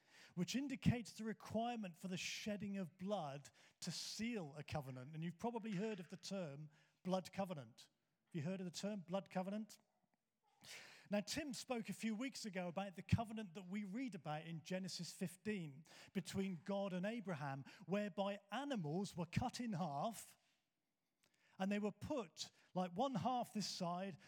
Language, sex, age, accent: English, male, 40-59, British